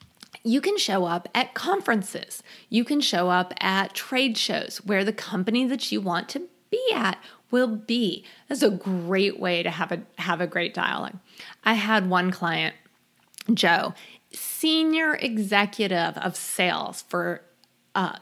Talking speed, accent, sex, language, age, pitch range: 150 wpm, American, female, English, 30-49, 180-230 Hz